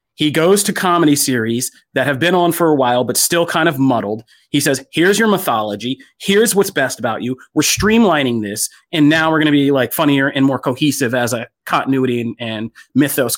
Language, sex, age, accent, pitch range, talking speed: English, male, 30-49, American, 120-150 Hz, 210 wpm